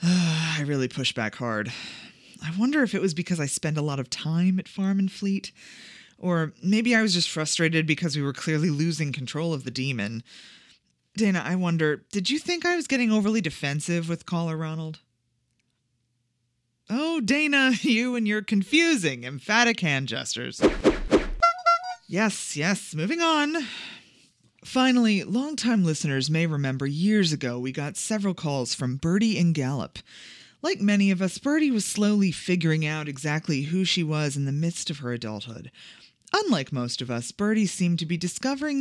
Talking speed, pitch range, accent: 165 wpm, 140-210 Hz, American